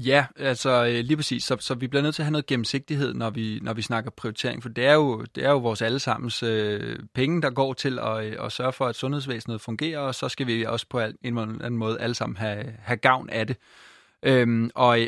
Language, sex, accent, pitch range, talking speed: Danish, male, native, 115-135 Hz, 220 wpm